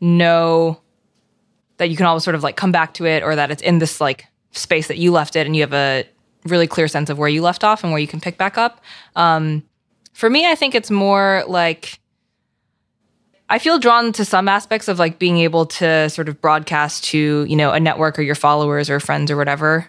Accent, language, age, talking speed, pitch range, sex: American, English, 20-39, 230 wpm, 155-185 Hz, female